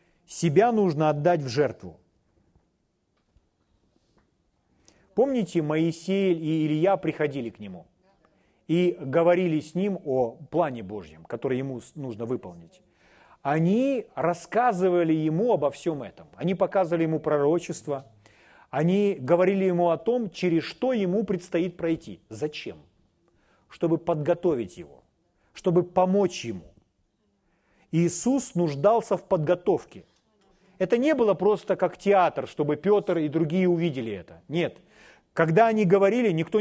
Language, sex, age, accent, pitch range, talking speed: Russian, male, 40-59, native, 155-195 Hz, 115 wpm